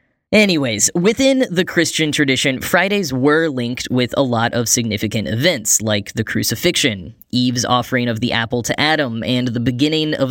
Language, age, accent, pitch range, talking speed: English, 10-29, American, 120-155 Hz, 165 wpm